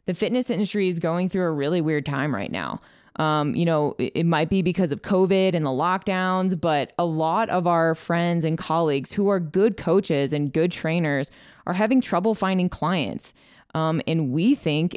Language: English